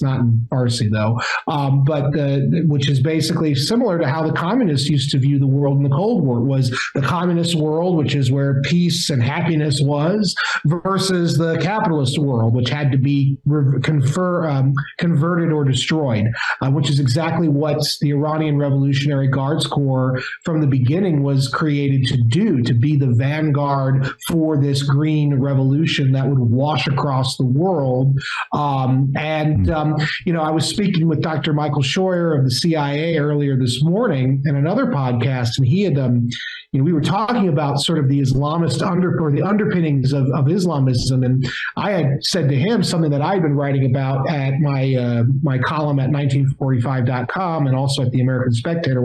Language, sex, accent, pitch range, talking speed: English, male, American, 135-155 Hz, 175 wpm